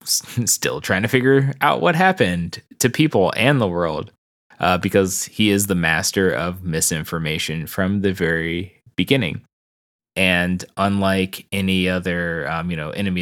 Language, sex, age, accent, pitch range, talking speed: English, male, 20-39, American, 85-100 Hz, 145 wpm